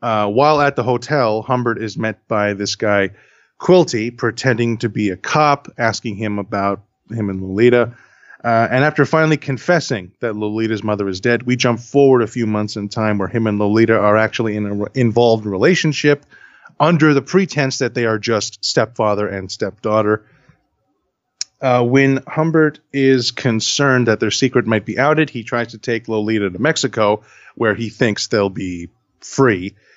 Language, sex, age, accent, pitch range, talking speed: English, male, 30-49, American, 105-130 Hz, 170 wpm